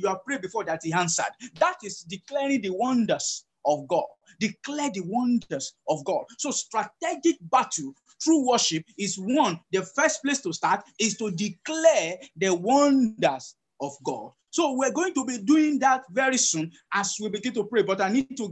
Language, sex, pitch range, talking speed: English, male, 185-270 Hz, 180 wpm